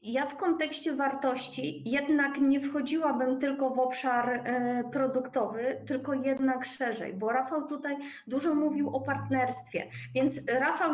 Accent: native